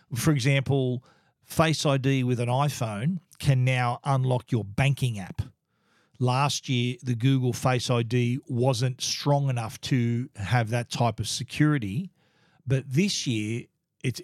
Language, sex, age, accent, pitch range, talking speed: English, male, 40-59, Australian, 120-145 Hz, 135 wpm